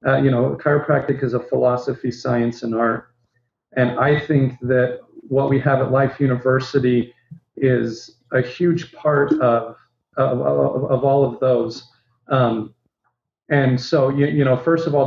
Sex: male